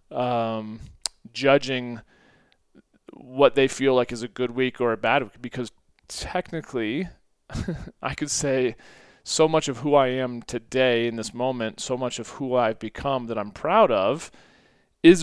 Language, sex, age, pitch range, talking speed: English, male, 30-49, 110-135 Hz, 160 wpm